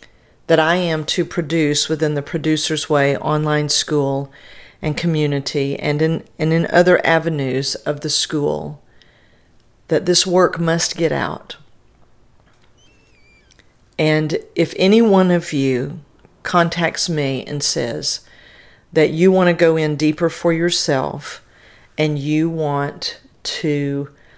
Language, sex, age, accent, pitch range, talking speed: English, female, 50-69, American, 150-175 Hz, 125 wpm